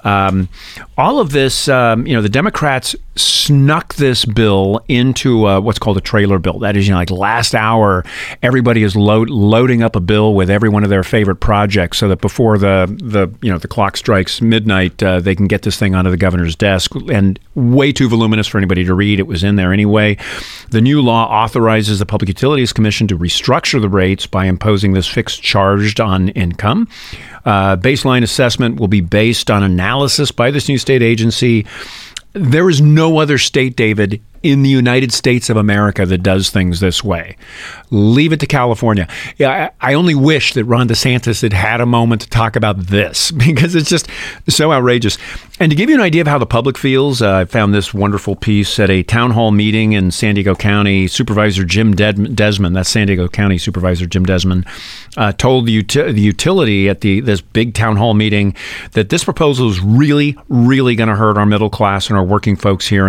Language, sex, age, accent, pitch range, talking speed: English, male, 40-59, American, 100-125 Hz, 205 wpm